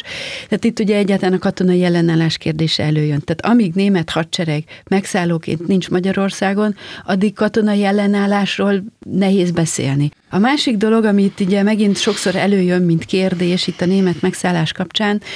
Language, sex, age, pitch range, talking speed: Hungarian, female, 30-49, 180-210 Hz, 140 wpm